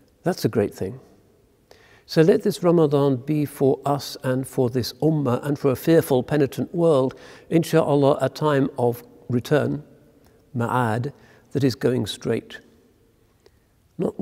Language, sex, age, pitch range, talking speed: English, male, 60-79, 115-140 Hz, 135 wpm